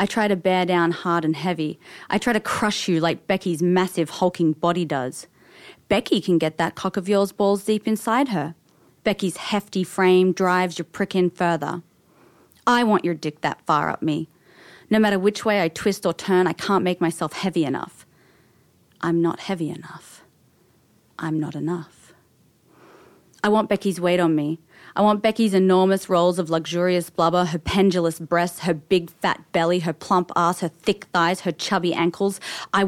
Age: 30-49